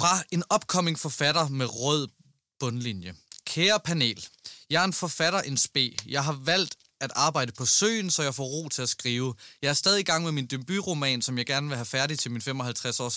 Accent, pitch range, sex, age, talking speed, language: native, 130-175 Hz, male, 20-39, 210 wpm, Danish